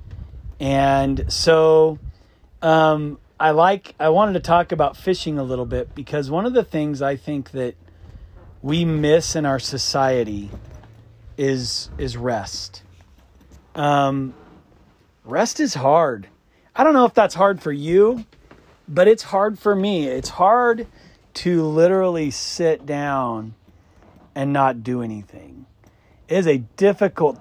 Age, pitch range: 30-49, 115-170 Hz